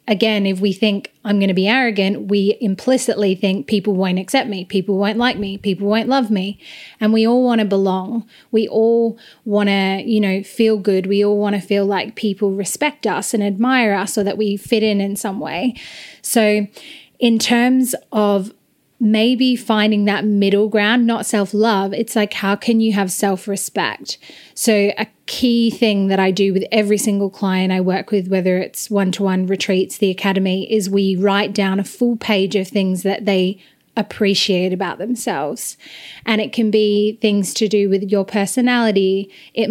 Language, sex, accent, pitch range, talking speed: English, female, Australian, 200-225 Hz, 185 wpm